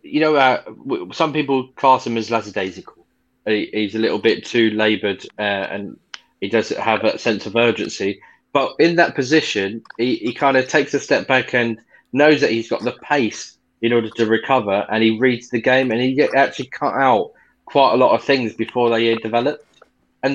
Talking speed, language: 200 wpm, English